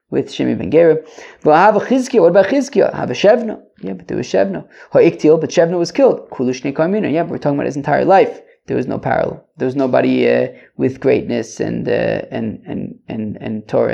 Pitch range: 140-190 Hz